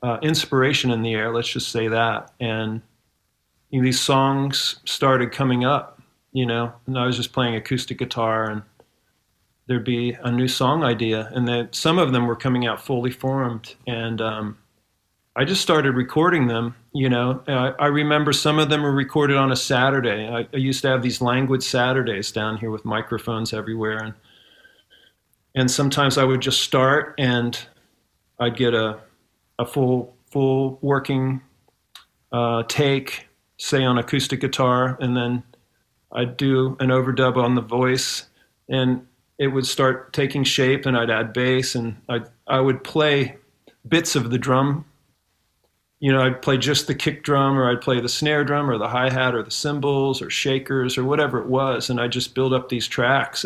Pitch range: 120-135 Hz